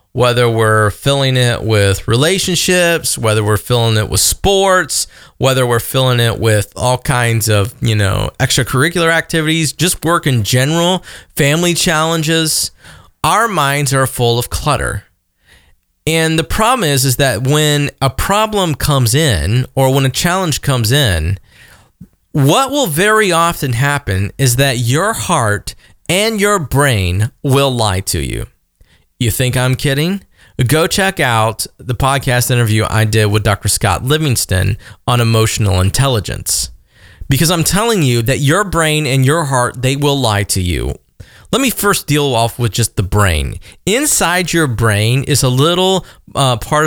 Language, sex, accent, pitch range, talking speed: English, male, American, 110-155 Hz, 155 wpm